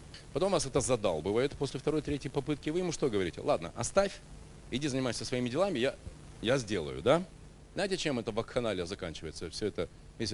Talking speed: 175 wpm